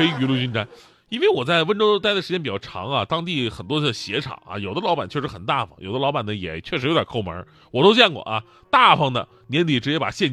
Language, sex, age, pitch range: Chinese, male, 30-49, 125-205 Hz